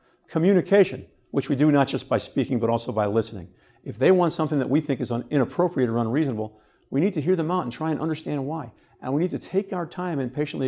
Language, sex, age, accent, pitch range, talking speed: English, male, 50-69, American, 125-165 Hz, 240 wpm